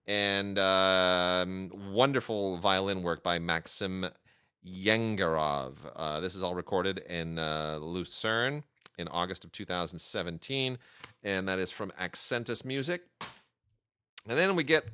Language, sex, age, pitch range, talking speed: English, male, 30-49, 90-115 Hz, 120 wpm